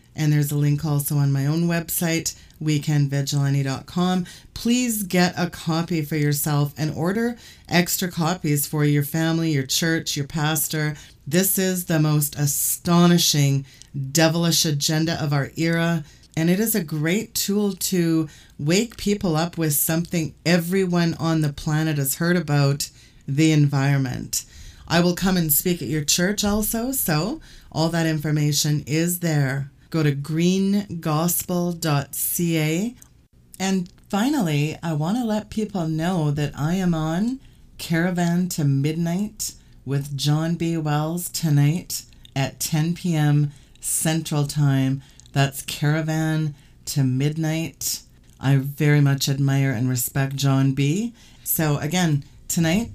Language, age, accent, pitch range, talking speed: English, 30-49, American, 140-170 Hz, 130 wpm